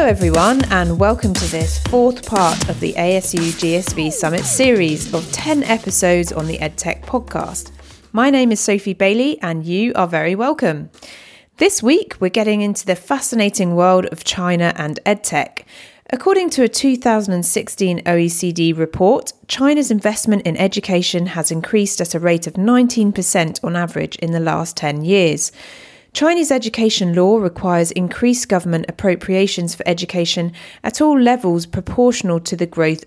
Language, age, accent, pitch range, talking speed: English, 30-49, British, 170-230 Hz, 150 wpm